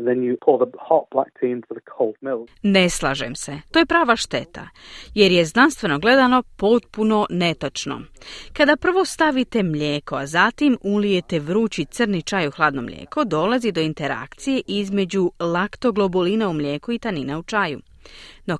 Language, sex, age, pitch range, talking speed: Croatian, female, 30-49, 155-255 Hz, 125 wpm